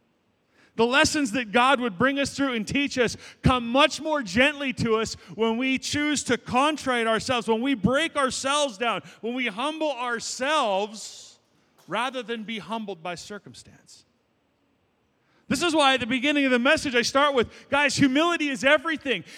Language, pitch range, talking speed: English, 245-305 Hz, 165 wpm